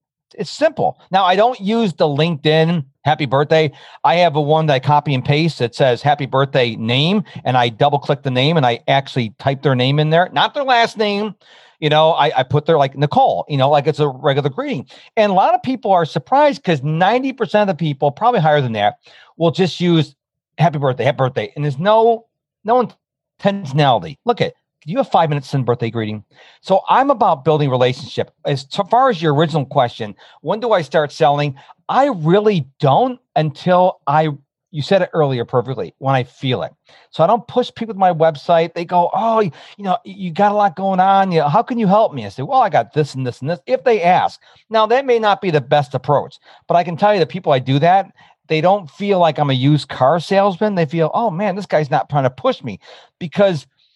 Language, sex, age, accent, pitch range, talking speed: English, male, 40-59, American, 140-195 Hz, 225 wpm